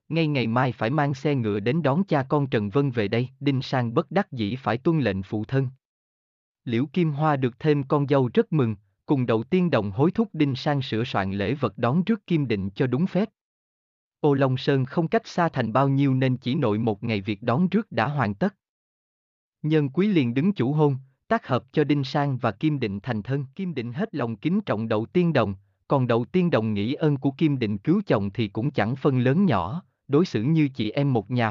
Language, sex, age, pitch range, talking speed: Vietnamese, male, 20-39, 110-155 Hz, 230 wpm